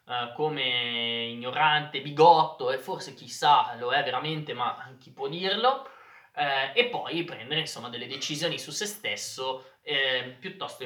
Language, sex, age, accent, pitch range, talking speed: Italian, male, 20-39, native, 125-175 Hz, 140 wpm